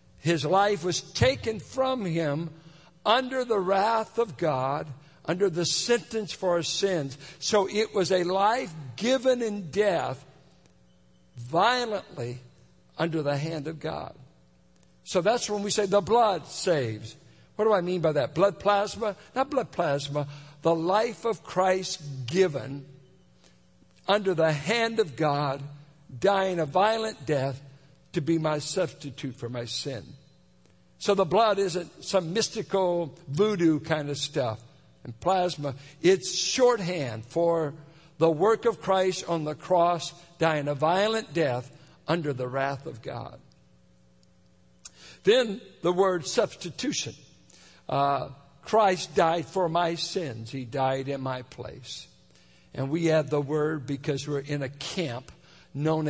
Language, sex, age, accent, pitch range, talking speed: English, male, 60-79, American, 140-190 Hz, 135 wpm